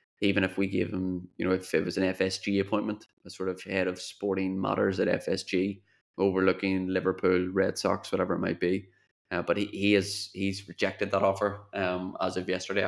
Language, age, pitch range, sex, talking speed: English, 20-39, 90-100 Hz, male, 200 wpm